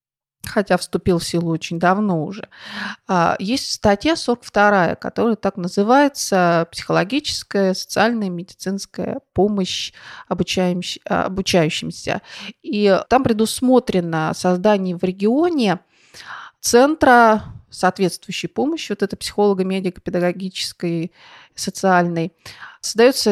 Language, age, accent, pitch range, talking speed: Russian, 30-49, native, 185-235 Hz, 80 wpm